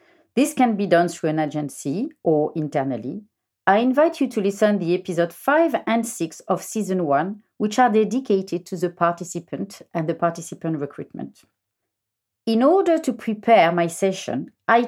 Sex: female